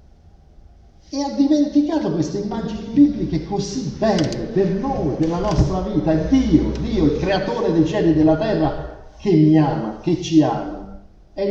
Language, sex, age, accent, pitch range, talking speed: Italian, male, 50-69, native, 120-190 Hz, 160 wpm